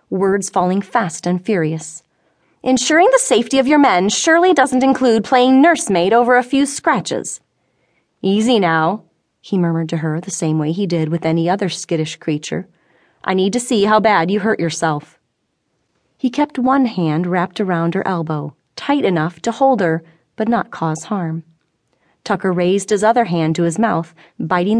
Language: English